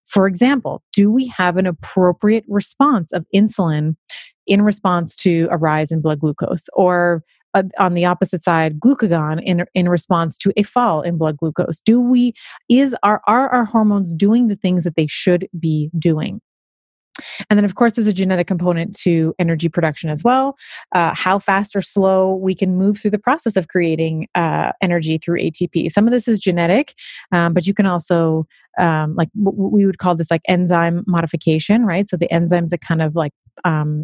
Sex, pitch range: female, 160-195 Hz